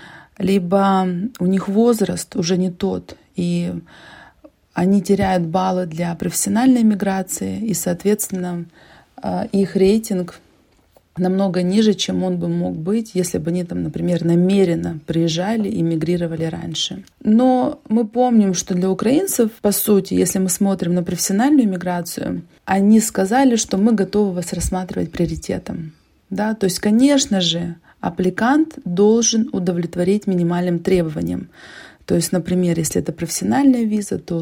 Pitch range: 175-215 Hz